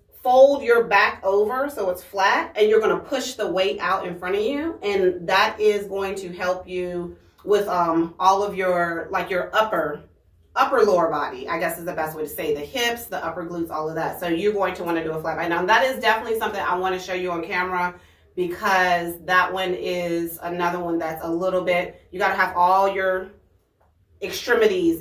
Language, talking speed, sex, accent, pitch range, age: English, 220 wpm, female, American, 175-210 Hz, 30-49